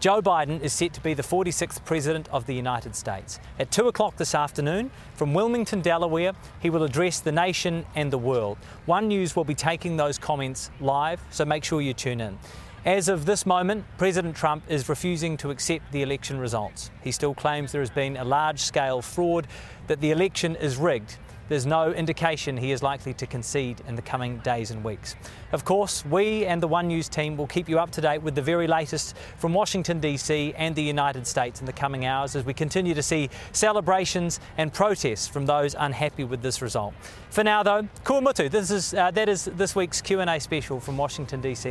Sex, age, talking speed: male, 30-49, 205 wpm